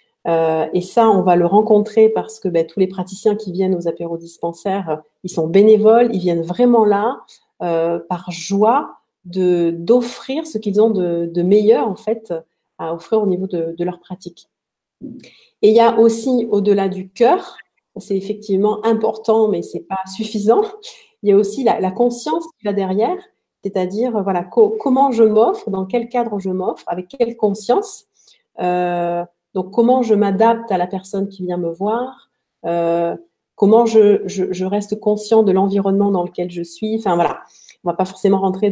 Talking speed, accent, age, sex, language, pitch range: 175 wpm, French, 40-59, female, French, 180-230 Hz